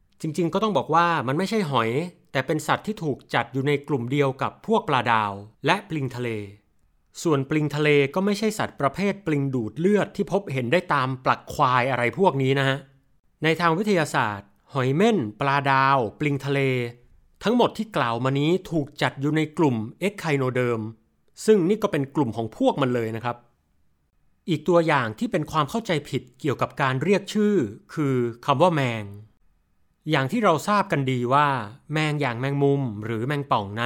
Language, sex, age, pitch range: Thai, male, 30-49, 125-160 Hz